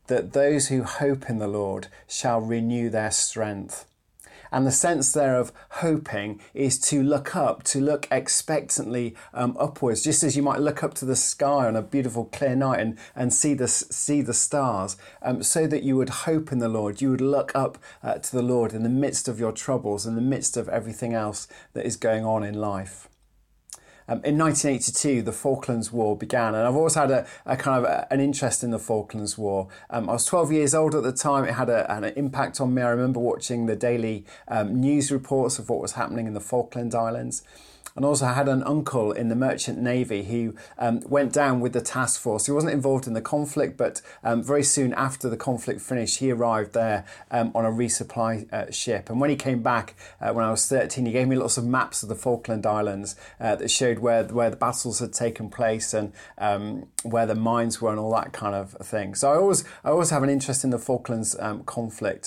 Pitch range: 110-135 Hz